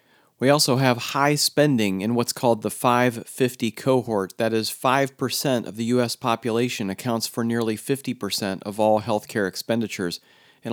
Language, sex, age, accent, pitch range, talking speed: English, male, 40-59, American, 105-130 Hz, 150 wpm